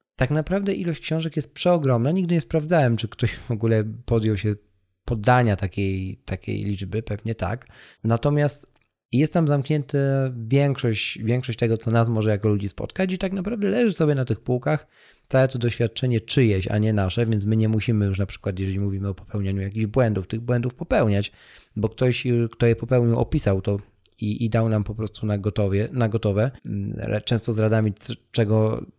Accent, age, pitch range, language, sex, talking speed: native, 20-39, 105-135 Hz, Polish, male, 170 wpm